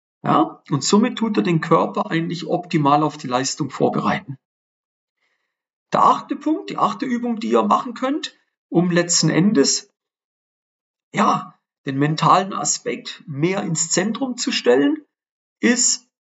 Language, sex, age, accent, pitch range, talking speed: German, male, 40-59, German, 150-230 Hz, 130 wpm